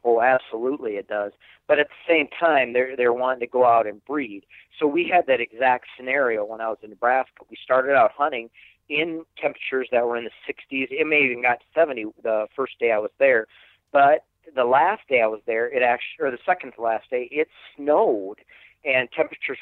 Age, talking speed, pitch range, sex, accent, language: 40-59, 215 wpm, 115-145 Hz, male, American, English